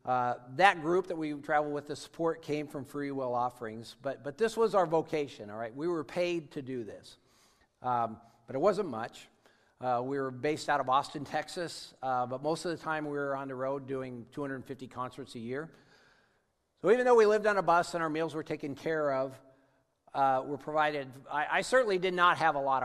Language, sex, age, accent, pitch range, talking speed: English, male, 50-69, American, 125-165 Hz, 220 wpm